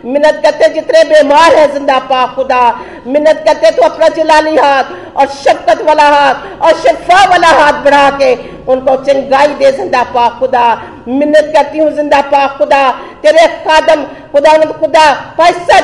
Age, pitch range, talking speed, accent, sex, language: 50-69, 285-345 Hz, 145 wpm, native, female, Hindi